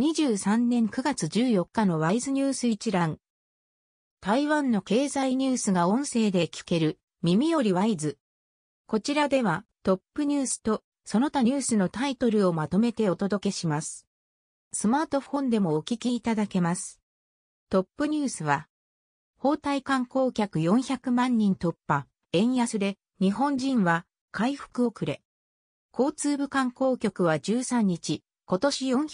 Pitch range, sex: 175-260 Hz, female